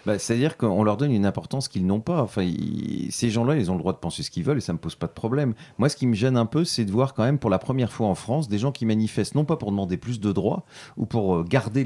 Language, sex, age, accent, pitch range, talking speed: French, male, 40-59, French, 95-130 Hz, 315 wpm